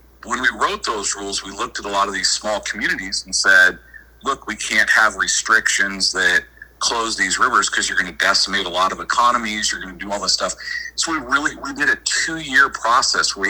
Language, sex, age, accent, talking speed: English, male, 40-59, American, 225 wpm